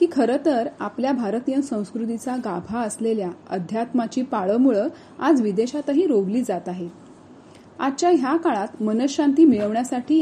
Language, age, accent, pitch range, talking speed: Marathi, 30-49, native, 210-285 Hz, 110 wpm